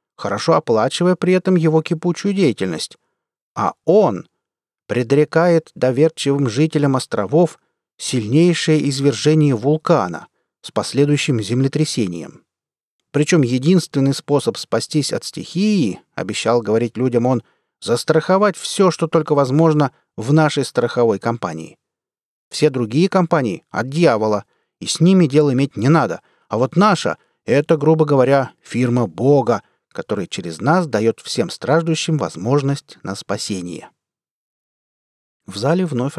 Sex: male